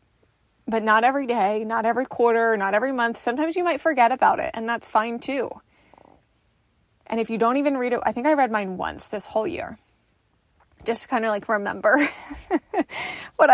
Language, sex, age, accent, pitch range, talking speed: English, female, 20-39, American, 205-245 Hz, 185 wpm